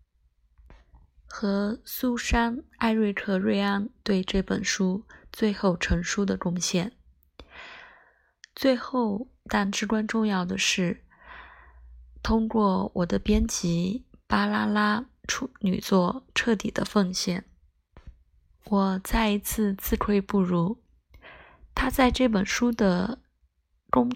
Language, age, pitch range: Chinese, 20-39, 180-220 Hz